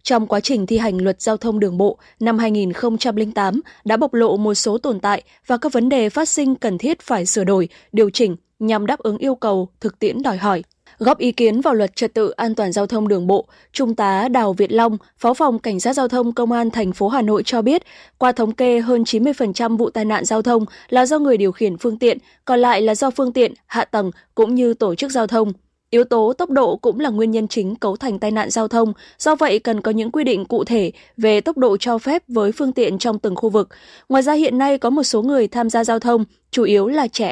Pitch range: 210-250 Hz